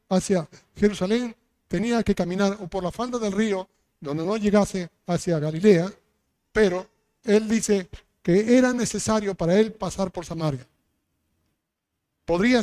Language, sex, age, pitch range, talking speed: Spanish, male, 50-69, 165-215 Hz, 130 wpm